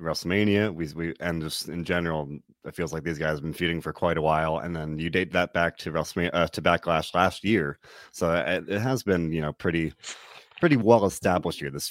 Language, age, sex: English, 30-49, male